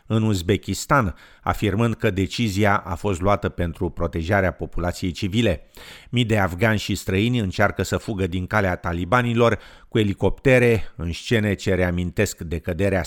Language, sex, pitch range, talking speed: English, male, 90-110 Hz, 140 wpm